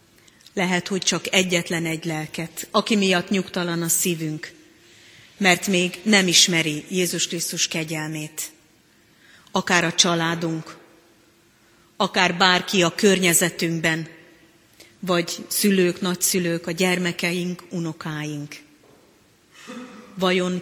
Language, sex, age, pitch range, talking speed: Hungarian, female, 30-49, 160-185 Hz, 95 wpm